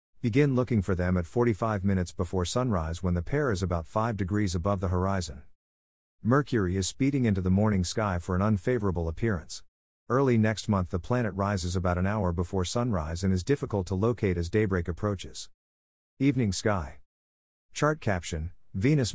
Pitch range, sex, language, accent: 90-115 Hz, male, English, American